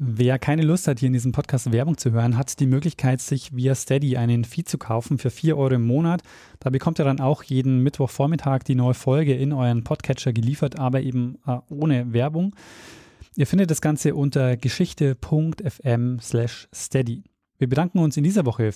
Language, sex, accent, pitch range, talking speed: German, male, German, 125-165 Hz, 185 wpm